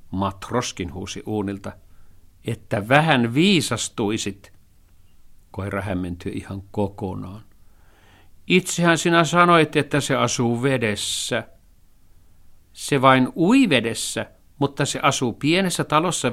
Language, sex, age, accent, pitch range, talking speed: Finnish, male, 50-69, native, 95-135 Hz, 95 wpm